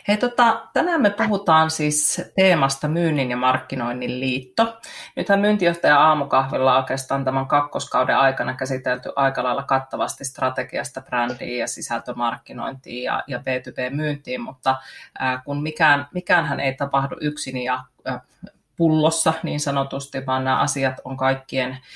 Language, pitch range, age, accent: Finnish, 130-155 Hz, 30-49, native